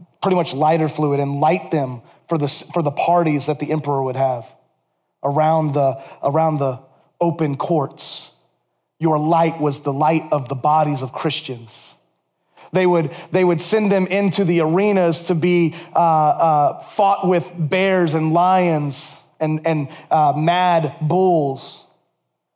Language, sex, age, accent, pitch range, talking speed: English, male, 30-49, American, 155-180 Hz, 150 wpm